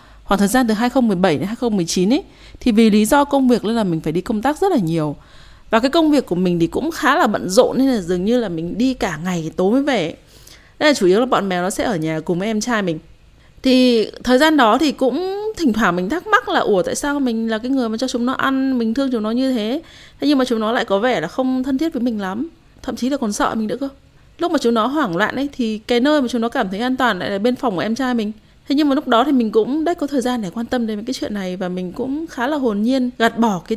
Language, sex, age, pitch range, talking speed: Vietnamese, female, 20-39, 210-265 Hz, 305 wpm